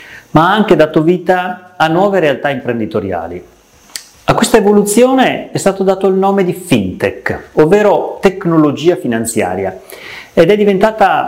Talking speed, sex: 135 wpm, male